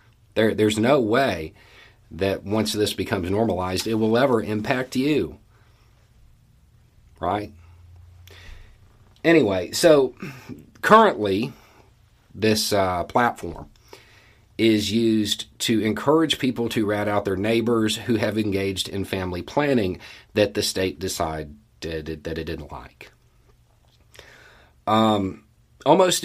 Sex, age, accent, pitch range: male, 40-59, American, 90-115 Hz